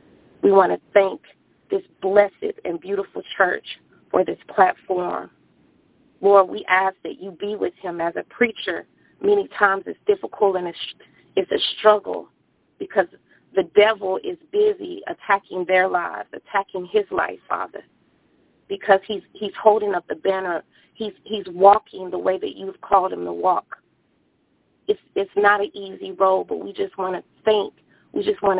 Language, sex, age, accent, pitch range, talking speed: English, female, 30-49, American, 190-235 Hz, 160 wpm